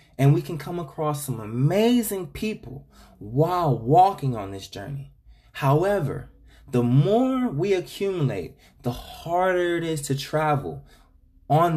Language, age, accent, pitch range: English, 20-39, American, 110-150 Hz